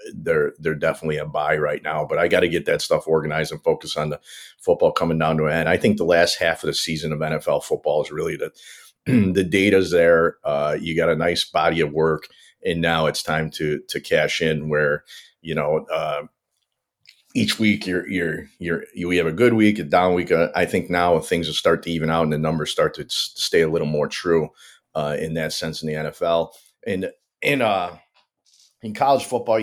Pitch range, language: 80-100 Hz, English